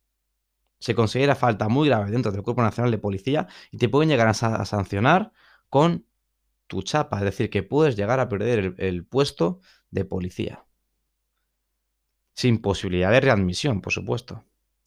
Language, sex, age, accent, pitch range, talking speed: Spanish, male, 20-39, Spanish, 95-130 Hz, 160 wpm